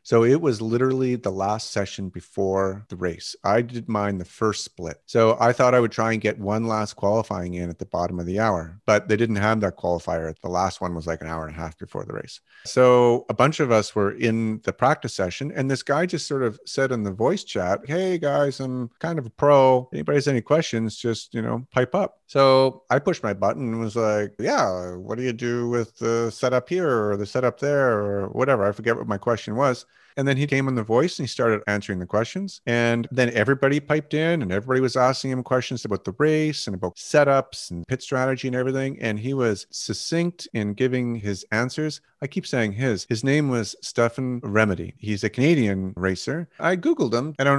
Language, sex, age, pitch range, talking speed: English, male, 40-59, 100-130 Hz, 225 wpm